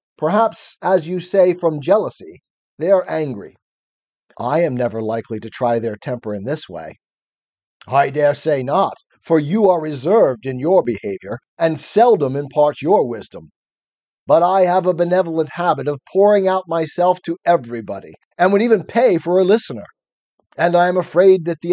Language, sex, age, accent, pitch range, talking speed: English, male, 40-59, American, 145-195 Hz, 170 wpm